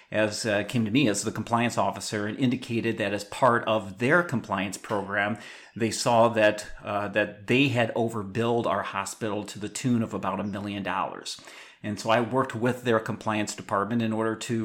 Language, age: English, 40-59